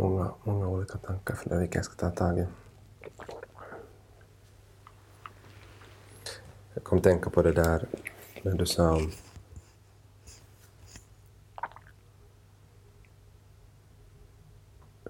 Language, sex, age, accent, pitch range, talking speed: Finnish, male, 30-49, native, 90-105 Hz, 85 wpm